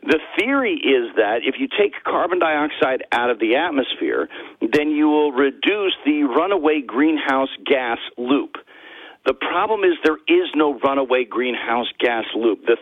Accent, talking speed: American, 155 wpm